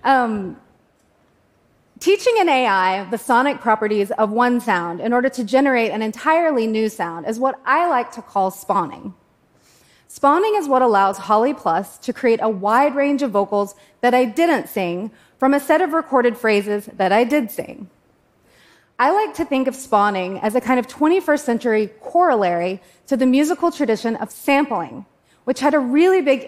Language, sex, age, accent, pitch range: Japanese, female, 30-49, American, 215-280 Hz